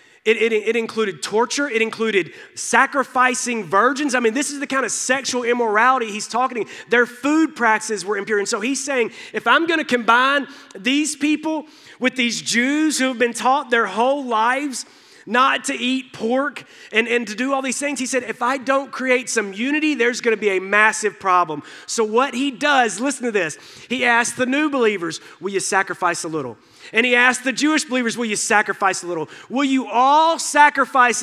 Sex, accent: male, American